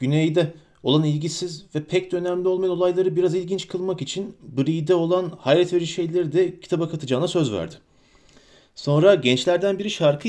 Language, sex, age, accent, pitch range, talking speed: Turkish, male, 30-49, native, 130-180 Hz, 155 wpm